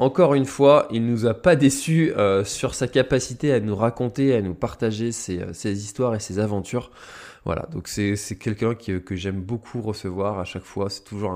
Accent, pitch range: French, 100-135 Hz